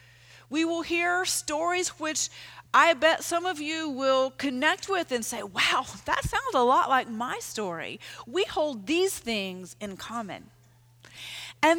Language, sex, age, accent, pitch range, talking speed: English, female, 40-59, American, 235-335 Hz, 155 wpm